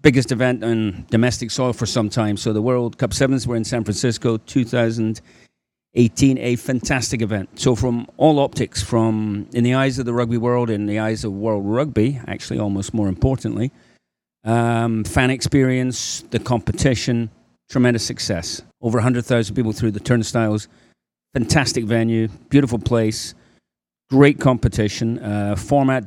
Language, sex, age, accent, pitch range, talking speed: English, male, 40-59, British, 110-130 Hz, 145 wpm